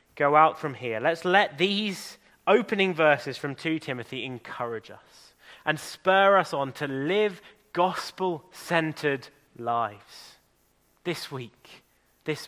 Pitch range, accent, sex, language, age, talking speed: 110-180 Hz, British, male, English, 20-39, 120 wpm